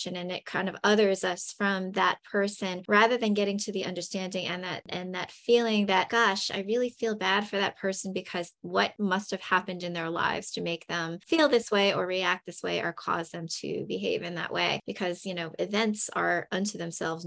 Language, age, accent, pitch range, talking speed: English, 20-39, American, 180-220 Hz, 215 wpm